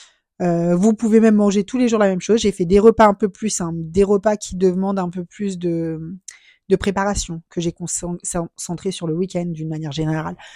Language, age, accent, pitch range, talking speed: French, 20-39, French, 180-220 Hz, 210 wpm